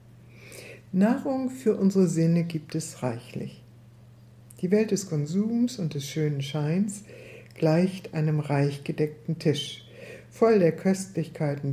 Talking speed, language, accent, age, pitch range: 120 wpm, German, German, 60-79, 130-185 Hz